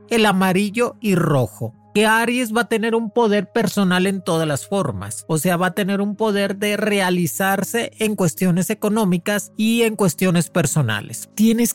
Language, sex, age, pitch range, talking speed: Spanish, male, 40-59, 180-225 Hz, 170 wpm